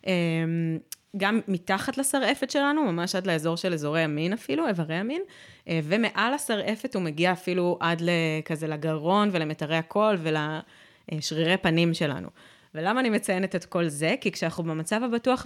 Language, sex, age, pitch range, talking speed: Hebrew, female, 20-39, 165-210 Hz, 140 wpm